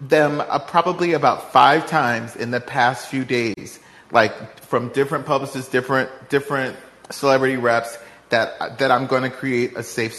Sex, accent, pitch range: male, American, 120-150 Hz